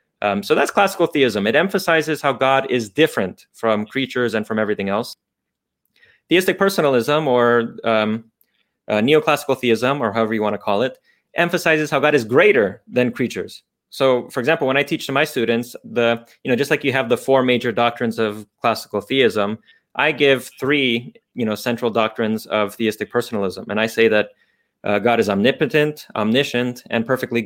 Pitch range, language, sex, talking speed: 115-150 Hz, English, male, 180 wpm